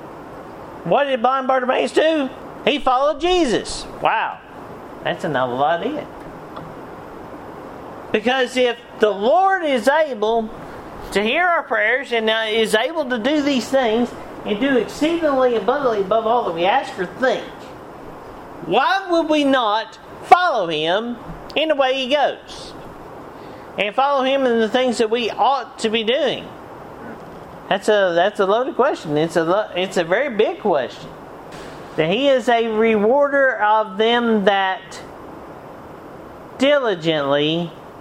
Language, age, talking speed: English, 50-69, 135 wpm